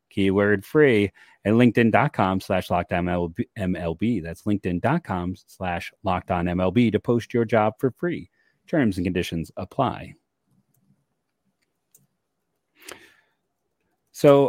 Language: English